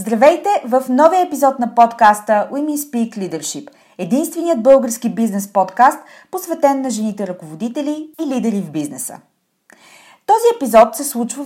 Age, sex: 30-49, female